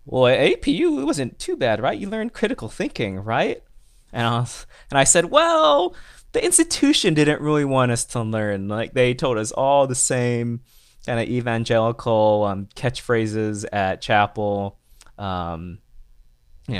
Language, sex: English, male